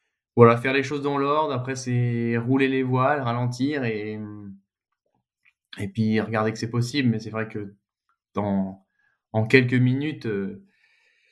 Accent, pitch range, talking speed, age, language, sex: French, 115-135 Hz, 150 wpm, 20-39, French, male